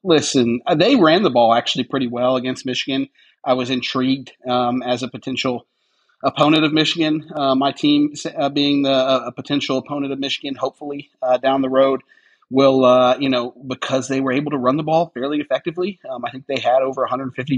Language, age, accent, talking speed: English, 40-59, American, 195 wpm